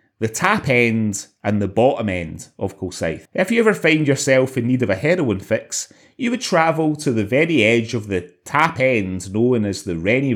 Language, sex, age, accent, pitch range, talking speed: English, male, 30-49, British, 110-150 Hz, 205 wpm